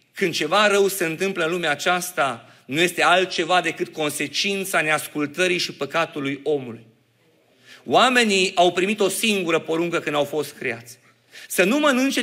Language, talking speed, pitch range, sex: Romanian, 145 wpm, 155-205 Hz, male